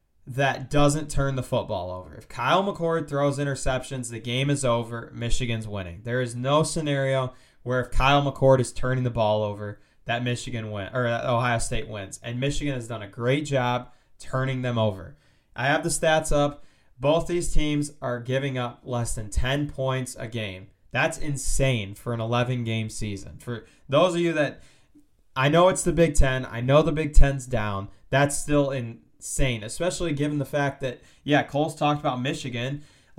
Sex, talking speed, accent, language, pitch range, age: male, 185 wpm, American, English, 115-145 Hz, 20-39